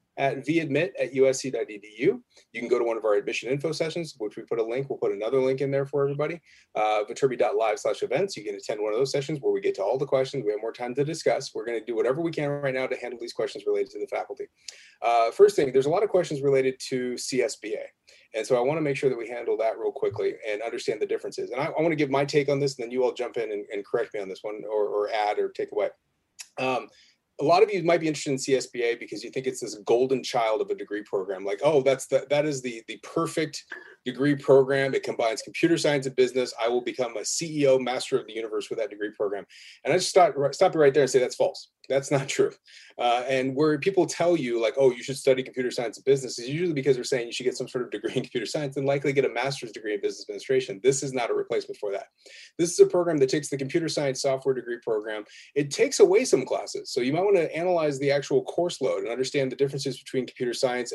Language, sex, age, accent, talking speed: English, male, 30-49, American, 265 wpm